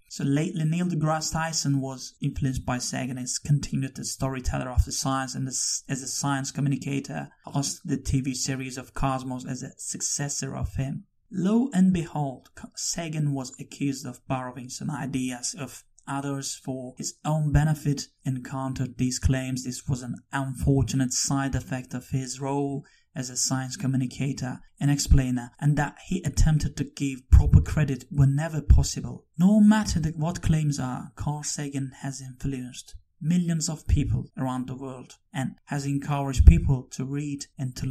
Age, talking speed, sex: 30-49, 160 wpm, male